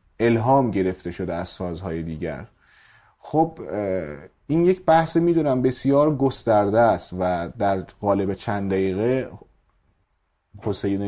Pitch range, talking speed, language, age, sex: 95-135 Hz, 110 wpm, Persian, 30-49, male